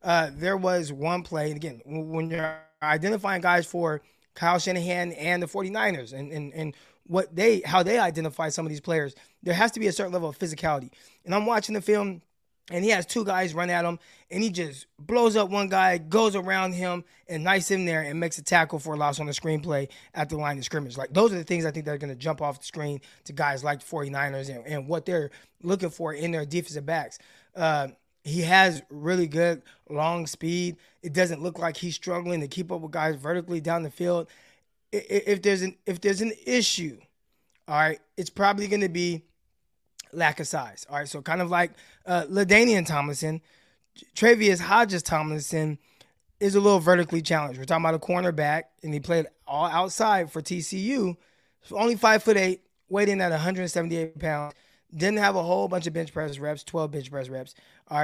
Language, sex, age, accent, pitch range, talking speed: English, male, 20-39, American, 155-185 Hz, 210 wpm